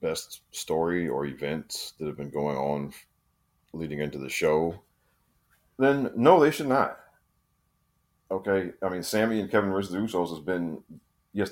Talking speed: 145 wpm